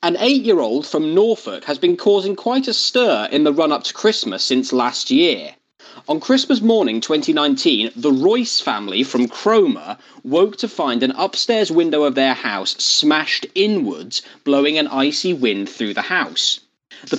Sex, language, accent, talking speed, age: male, English, British, 160 wpm, 30-49